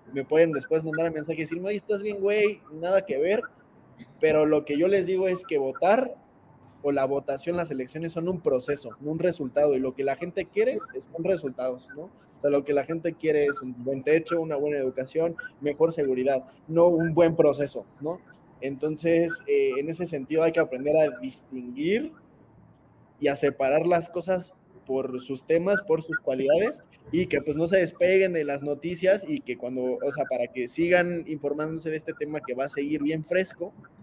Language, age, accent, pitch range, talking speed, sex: Spanish, 20-39, Mexican, 140-175 Hz, 200 wpm, male